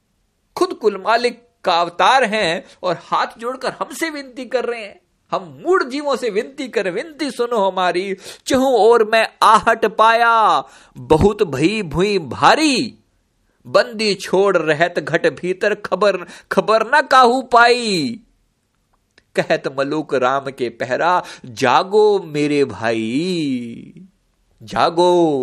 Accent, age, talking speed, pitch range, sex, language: native, 50-69, 125 wpm, 155-260 Hz, male, Hindi